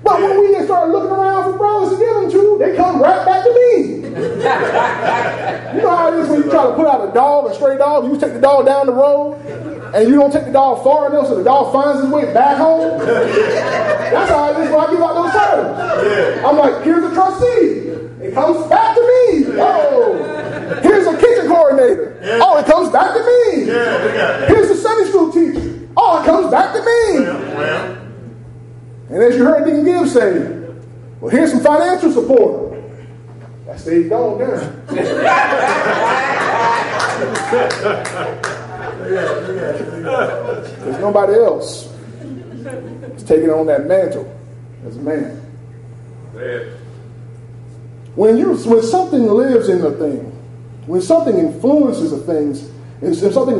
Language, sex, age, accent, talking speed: English, male, 20-39, American, 160 wpm